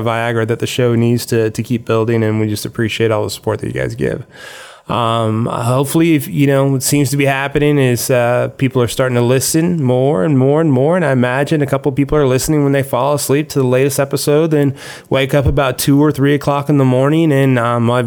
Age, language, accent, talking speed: 20-39, English, American, 240 wpm